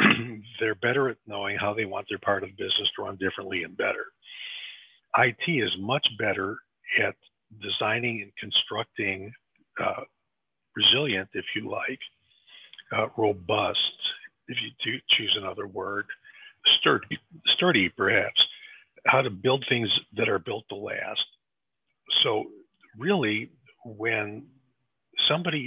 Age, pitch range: 50-69, 110-140 Hz